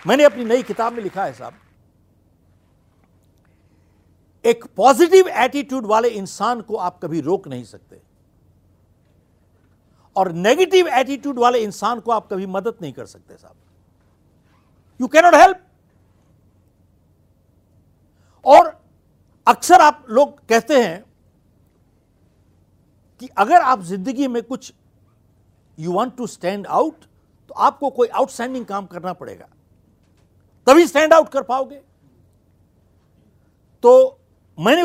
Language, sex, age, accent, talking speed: Hindi, male, 60-79, native, 115 wpm